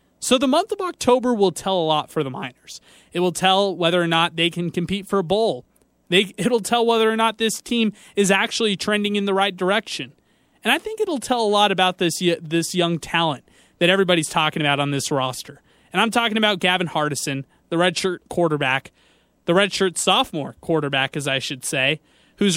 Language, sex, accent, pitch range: English, male, American, 160-200 Hz